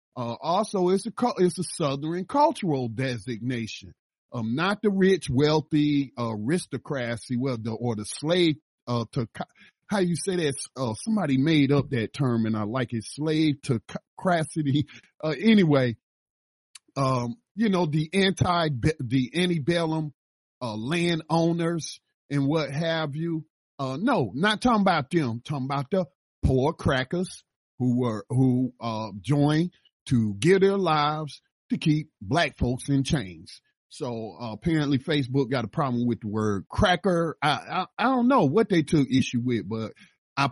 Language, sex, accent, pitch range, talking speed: English, male, American, 125-170 Hz, 155 wpm